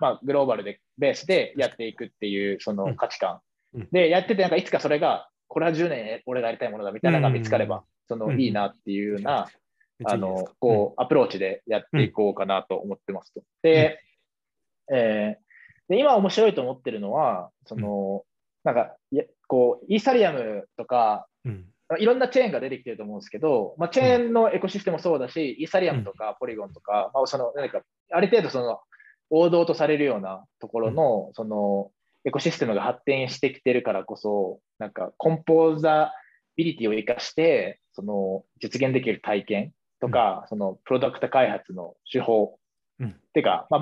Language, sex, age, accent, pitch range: Japanese, male, 20-39, native, 105-165 Hz